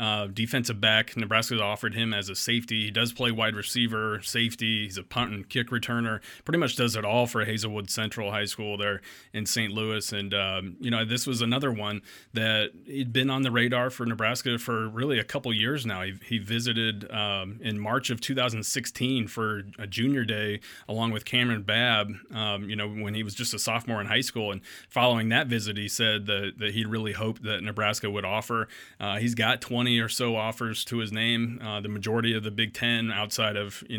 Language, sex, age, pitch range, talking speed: English, male, 30-49, 105-120 Hz, 210 wpm